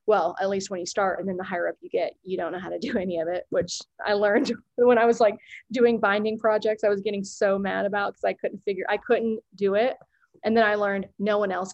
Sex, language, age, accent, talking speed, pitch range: female, English, 20-39, American, 270 wpm, 185-215 Hz